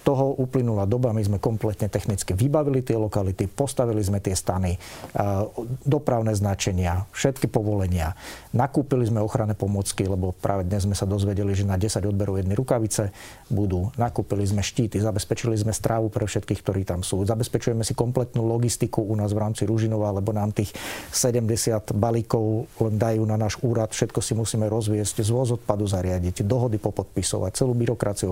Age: 40-59